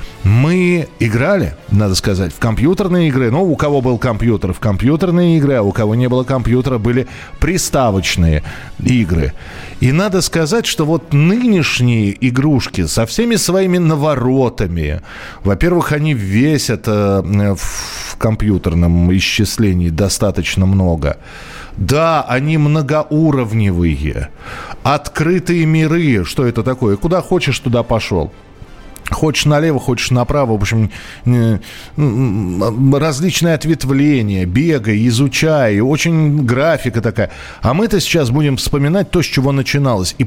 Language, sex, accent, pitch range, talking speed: Russian, male, native, 105-150 Hz, 120 wpm